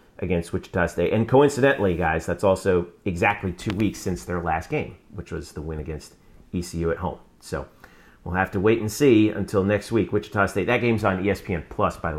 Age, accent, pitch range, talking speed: 40-59, American, 95-140 Hz, 205 wpm